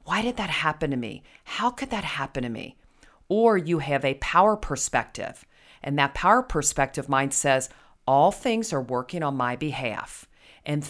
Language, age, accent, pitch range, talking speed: English, 40-59, American, 135-180 Hz, 175 wpm